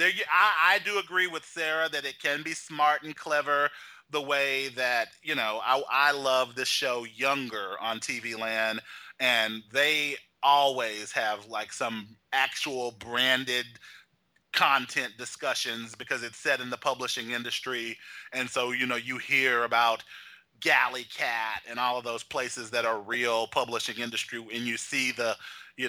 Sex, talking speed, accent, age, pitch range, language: male, 160 wpm, American, 30-49, 125-190 Hz, English